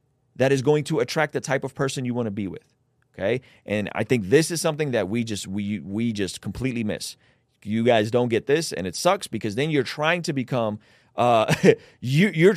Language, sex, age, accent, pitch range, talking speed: English, male, 30-49, American, 125-155 Hz, 220 wpm